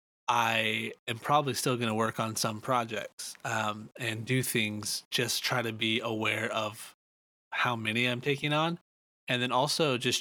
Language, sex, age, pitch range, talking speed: English, male, 20-39, 110-125 Hz, 170 wpm